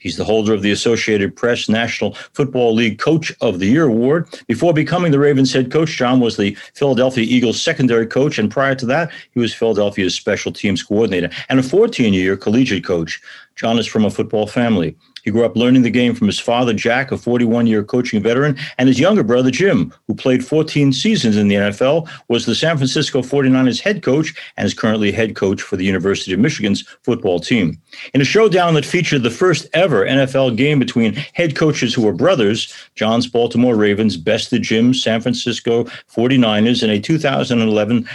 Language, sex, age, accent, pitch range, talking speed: English, male, 40-59, American, 110-140 Hz, 190 wpm